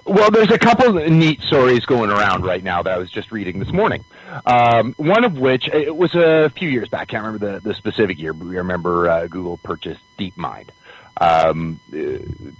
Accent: American